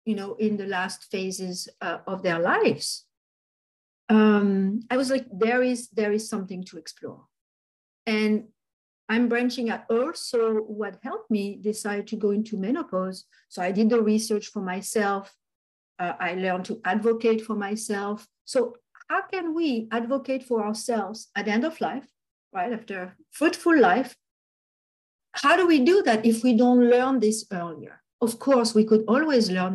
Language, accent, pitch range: English, French, 195-245 Hz